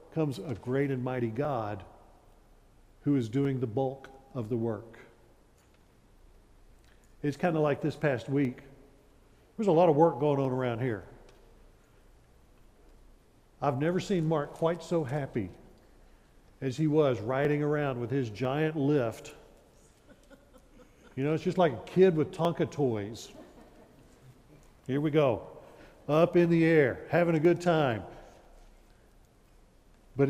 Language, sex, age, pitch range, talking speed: English, male, 50-69, 125-160 Hz, 135 wpm